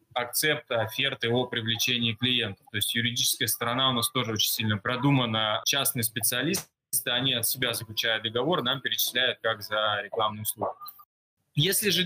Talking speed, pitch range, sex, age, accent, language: 150 wpm, 120-160 Hz, male, 20-39, native, Russian